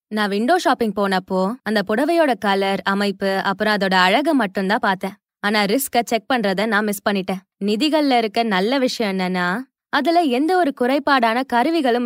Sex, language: female, Tamil